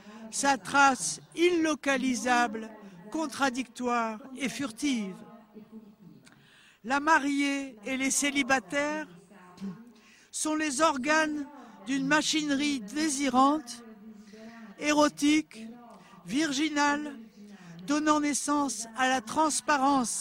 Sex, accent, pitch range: female, French, 220-285 Hz